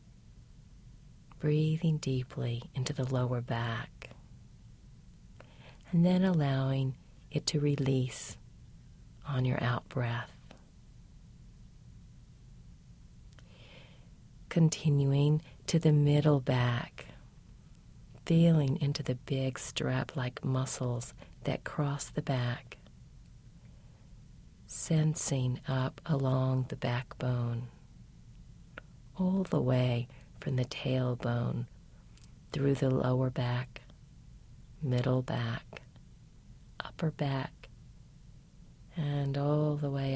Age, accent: 40-59, American